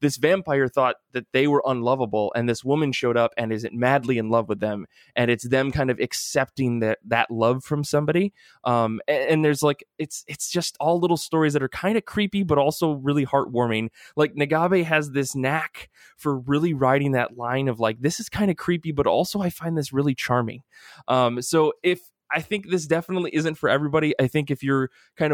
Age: 20-39